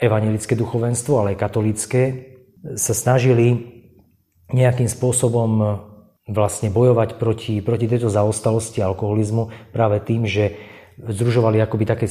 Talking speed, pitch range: 105 wpm, 100-115 Hz